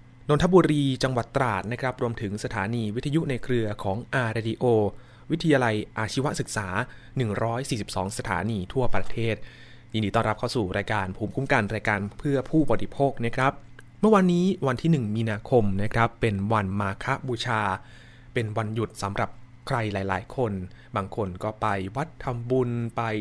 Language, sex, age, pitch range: Thai, male, 20-39, 110-135 Hz